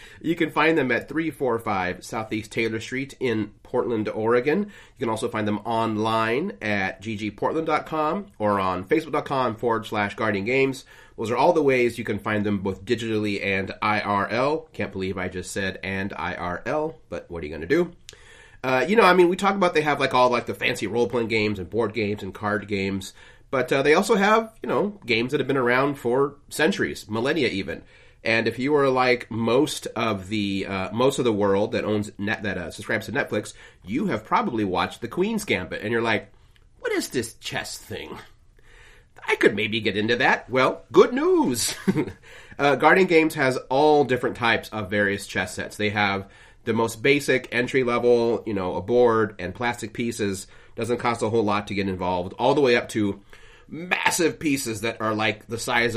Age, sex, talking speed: 30-49, male, 195 wpm